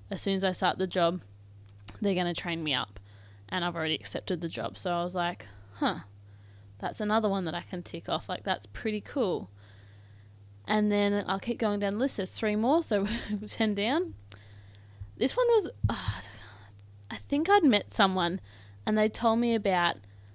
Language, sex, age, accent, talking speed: English, female, 10-29, Australian, 190 wpm